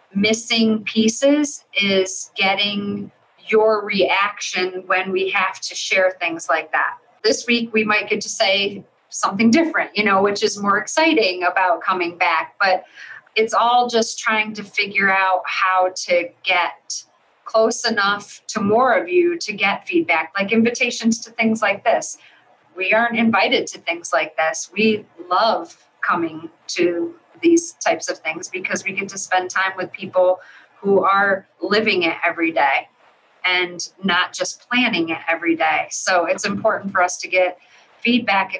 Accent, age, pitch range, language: American, 30-49, 180-225 Hz, English